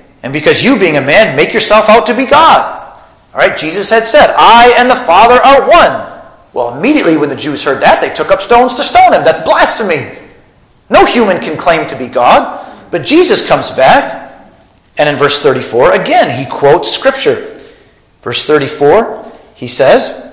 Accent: American